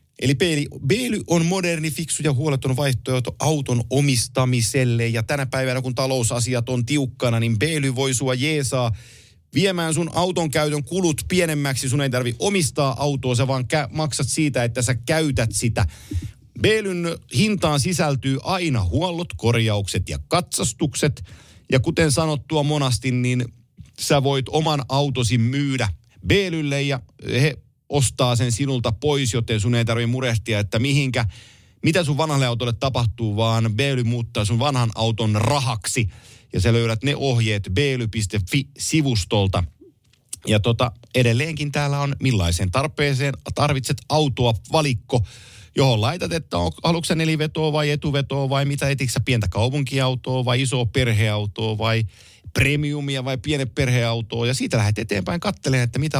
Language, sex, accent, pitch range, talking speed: Finnish, male, native, 115-145 Hz, 135 wpm